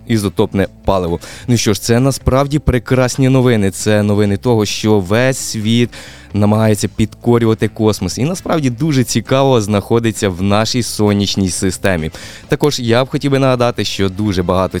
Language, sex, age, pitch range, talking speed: Ukrainian, male, 20-39, 100-130 Hz, 145 wpm